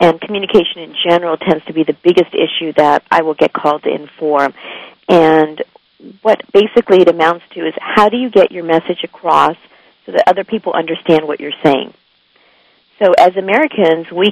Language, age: English, 50-69